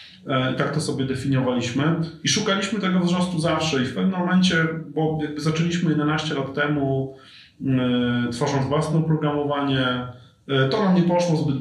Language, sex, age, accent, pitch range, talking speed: Polish, male, 30-49, native, 130-155 Hz, 155 wpm